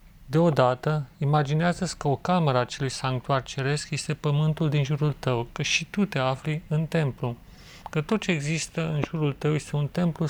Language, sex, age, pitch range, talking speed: Romanian, male, 30-49, 130-165 Hz, 180 wpm